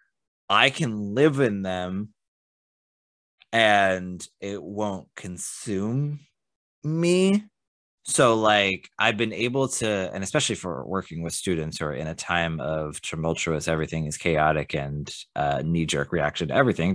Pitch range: 85-115 Hz